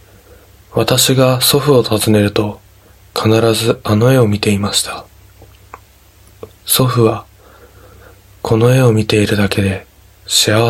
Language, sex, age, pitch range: Japanese, male, 20-39, 100-120 Hz